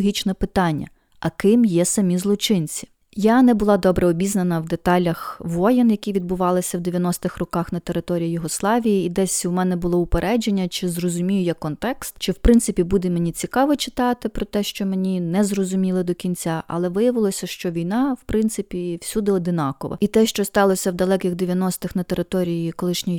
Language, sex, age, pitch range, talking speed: Ukrainian, female, 30-49, 175-210 Hz, 170 wpm